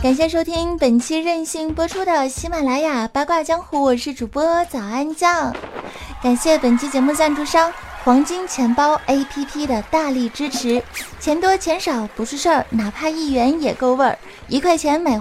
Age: 20-39